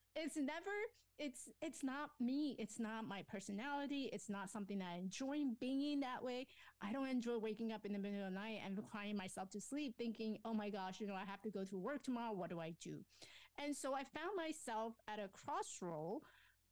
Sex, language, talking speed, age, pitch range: female, English, 210 wpm, 30-49, 190-255 Hz